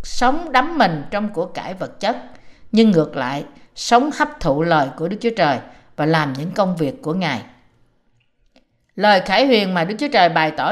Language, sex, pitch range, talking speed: Vietnamese, female, 170-245 Hz, 195 wpm